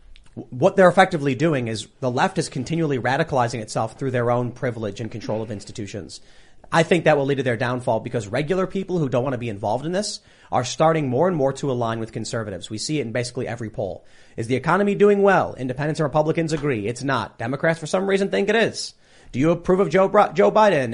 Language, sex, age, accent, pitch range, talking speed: English, male, 30-49, American, 120-160 Hz, 225 wpm